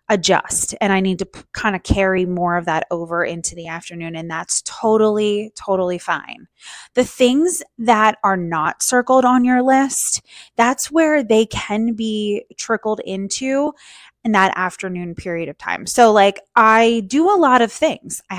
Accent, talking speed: American, 165 wpm